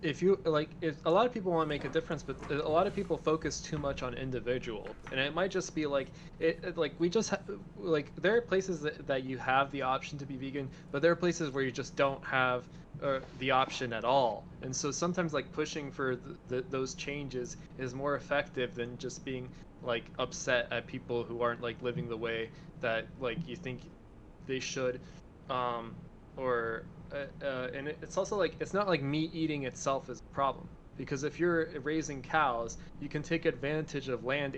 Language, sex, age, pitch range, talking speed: English, male, 20-39, 125-160 Hz, 210 wpm